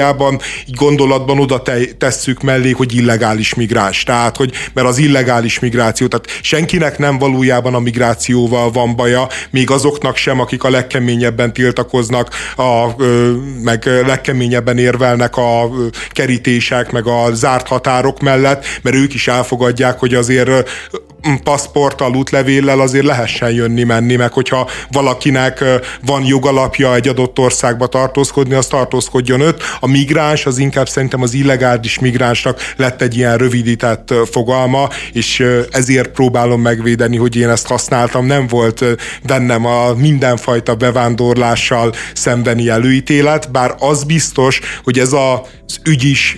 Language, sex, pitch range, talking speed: Hungarian, male, 120-135 Hz, 130 wpm